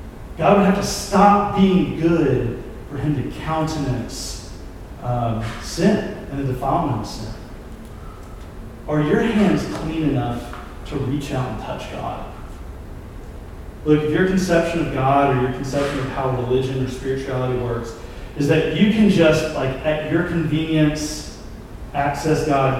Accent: American